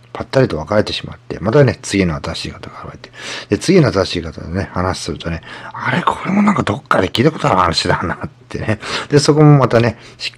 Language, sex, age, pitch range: Japanese, male, 40-59, 90-125 Hz